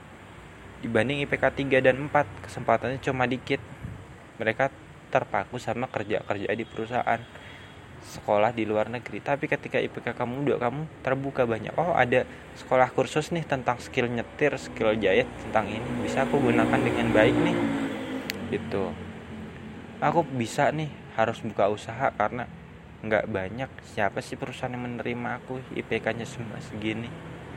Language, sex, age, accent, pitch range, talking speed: Indonesian, male, 20-39, native, 105-140 Hz, 135 wpm